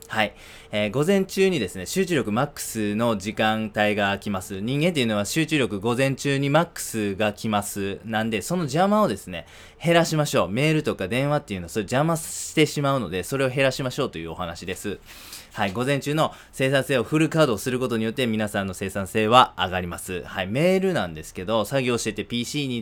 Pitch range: 100-145 Hz